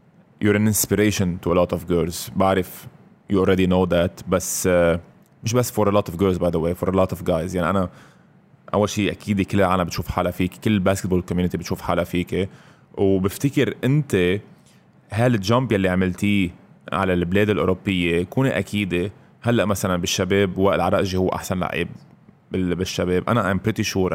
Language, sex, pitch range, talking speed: Arabic, male, 90-100 Hz, 170 wpm